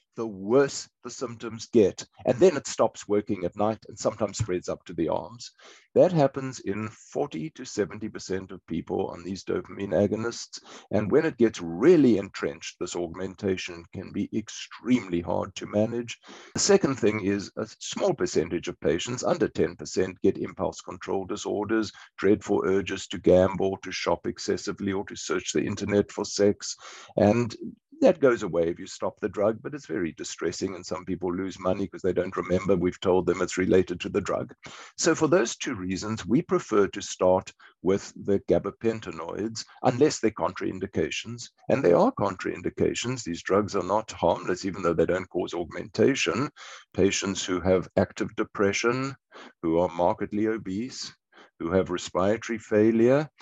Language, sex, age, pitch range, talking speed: English, male, 50-69, 95-115 Hz, 165 wpm